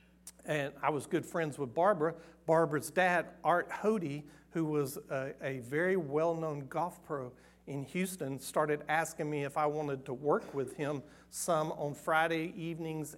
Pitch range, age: 135-160 Hz, 50-69